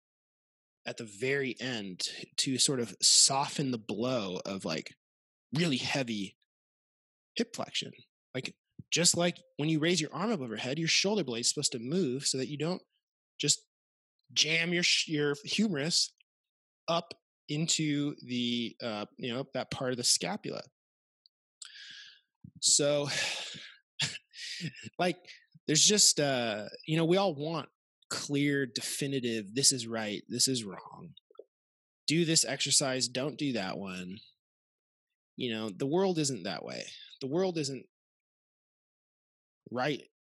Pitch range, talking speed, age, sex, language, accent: 120-165 Hz, 135 wpm, 20-39, male, English, American